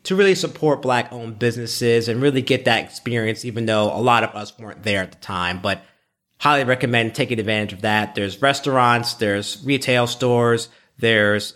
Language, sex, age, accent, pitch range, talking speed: English, male, 30-49, American, 110-140 Hz, 175 wpm